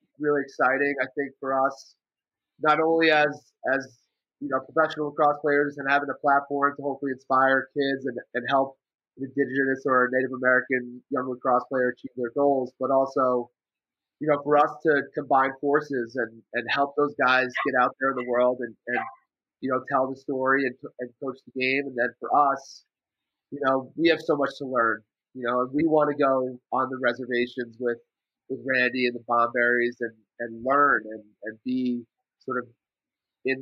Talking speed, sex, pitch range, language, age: 190 wpm, male, 120-140 Hz, English, 30-49